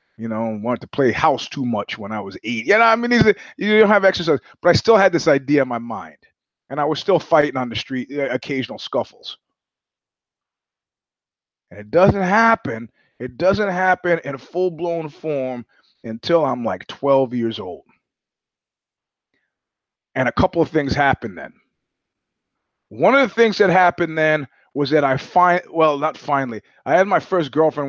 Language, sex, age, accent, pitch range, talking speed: English, male, 30-49, American, 130-175 Hz, 180 wpm